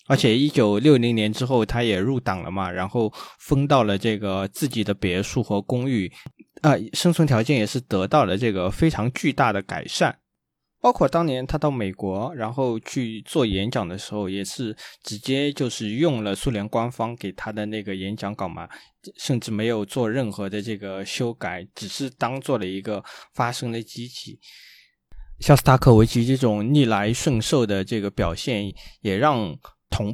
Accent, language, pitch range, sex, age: native, Chinese, 100-130 Hz, male, 20-39